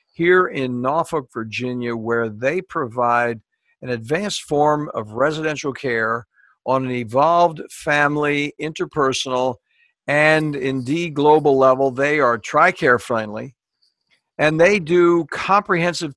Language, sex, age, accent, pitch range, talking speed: English, male, 60-79, American, 120-150 Hz, 110 wpm